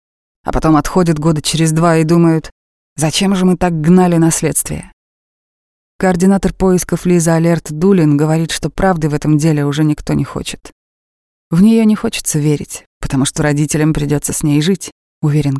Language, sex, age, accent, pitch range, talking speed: Russian, female, 20-39, native, 140-165 Hz, 160 wpm